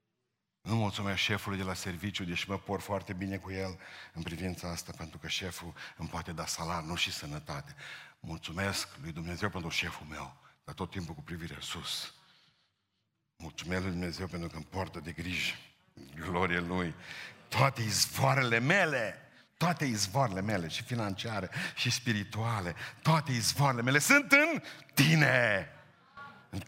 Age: 60-79